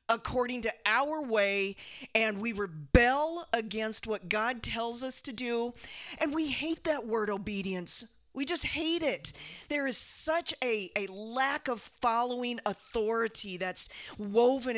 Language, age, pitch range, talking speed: English, 40-59, 205-260 Hz, 140 wpm